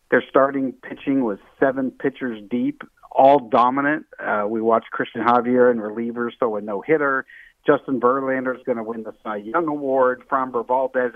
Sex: male